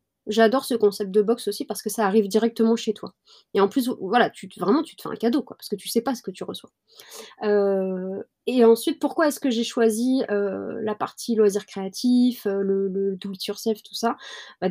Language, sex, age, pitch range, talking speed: French, female, 20-39, 200-235 Hz, 235 wpm